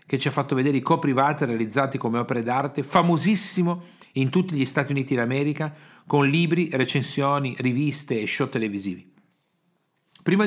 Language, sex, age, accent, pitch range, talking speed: Italian, male, 40-59, native, 125-175 Hz, 150 wpm